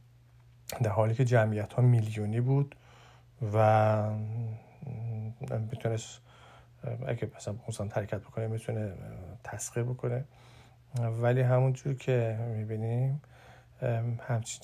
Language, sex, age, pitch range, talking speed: Persian, male, 50-69, 110-125 Hz, 80 wpm